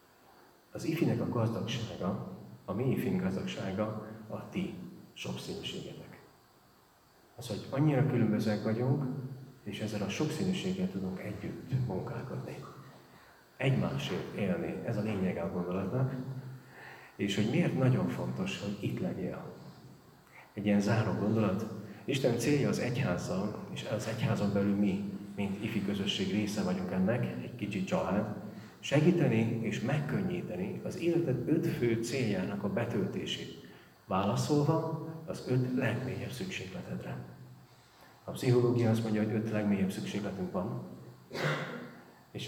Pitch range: 100-130 Hz